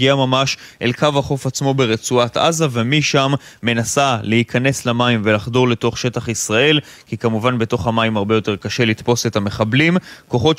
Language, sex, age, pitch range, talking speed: Hebrew, male, 20-39, 115-135 Hz, 155 wpm